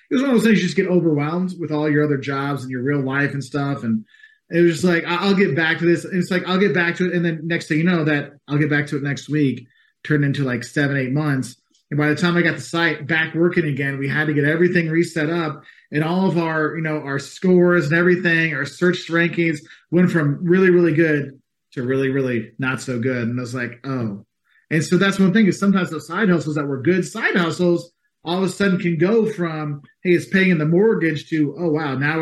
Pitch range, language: 140-180 Hz, English